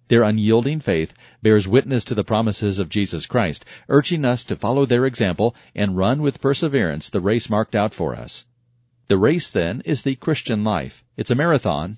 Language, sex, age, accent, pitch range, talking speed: English, male, 40-59, American, 105-125 Hz, 185 wpm